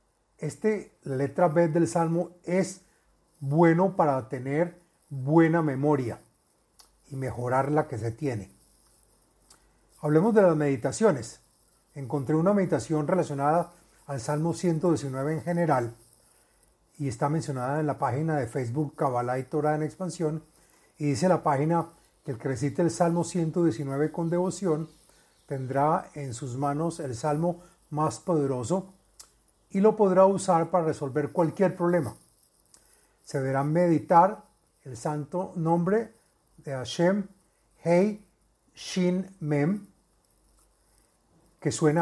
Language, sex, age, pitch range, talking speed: Spanish, male, 40-59, 145-175 Hz, 120 wpm